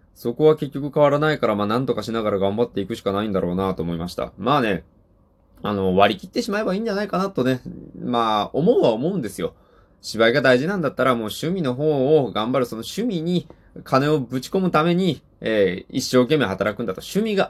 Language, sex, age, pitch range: Japanese, male, 20-39, 105-165 Hz